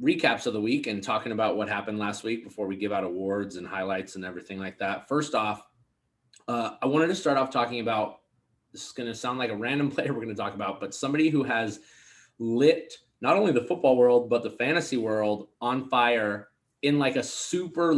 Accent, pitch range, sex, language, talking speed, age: American, 115-155 Hz, male, English, 220 wpm, 20-39